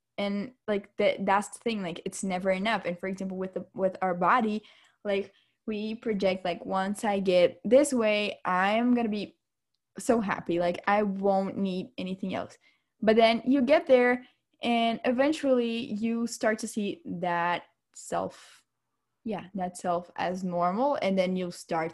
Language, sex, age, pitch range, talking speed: English, female, 10-29, 185-235 Hz, 165 wpm